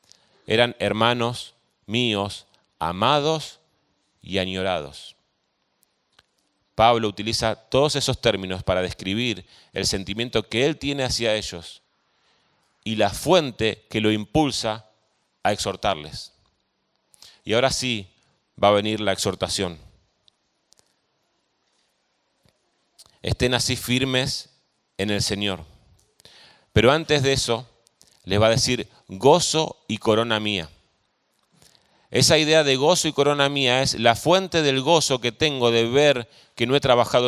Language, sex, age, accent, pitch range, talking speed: Spanish, male, 30-49, Argentinian, 105-135 Hz, 120 wpm